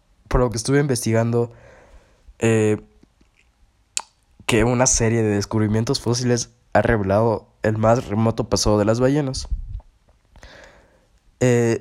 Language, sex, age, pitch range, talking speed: Spanish, male, 20-39, 105-120 Hz, 110 wpm